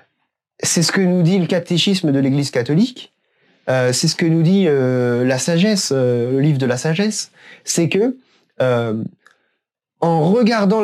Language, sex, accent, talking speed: French, male, French, 165 wpm